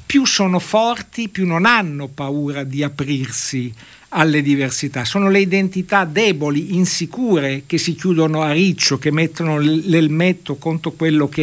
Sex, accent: male, native